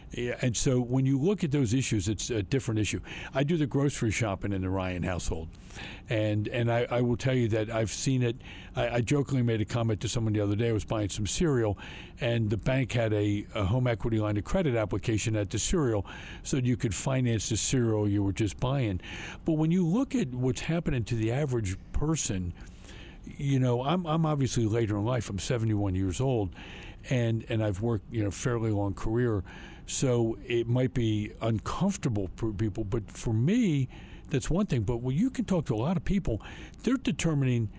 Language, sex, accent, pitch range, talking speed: English, male, American, 105-135 Hz, 210 wpm